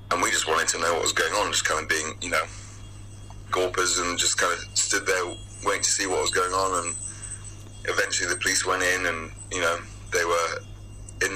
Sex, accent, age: male, British, 20-39